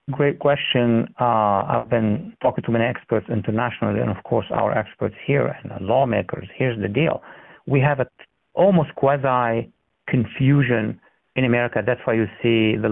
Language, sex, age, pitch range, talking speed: English, male, 50-69, 115-140 Hz, 165 wpm